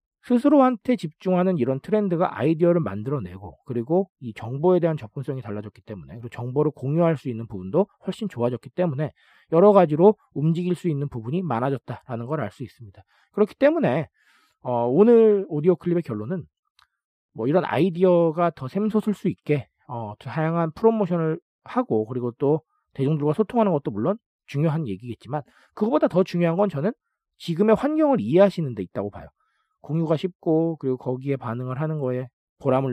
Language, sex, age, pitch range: Korean, male, 40-59, 125-185 Hz